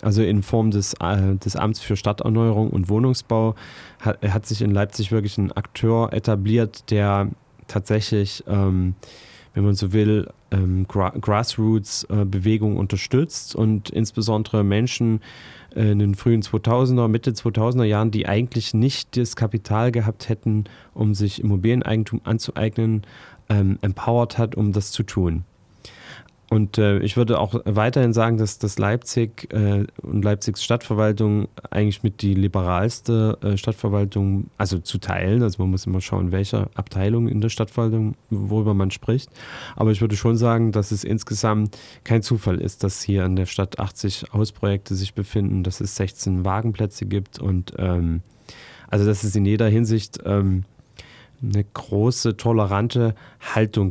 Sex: male